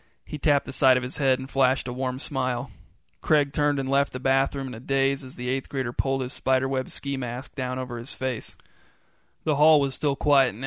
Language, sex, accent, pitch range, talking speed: English, male, American, 130-140 Hz, 225 wpm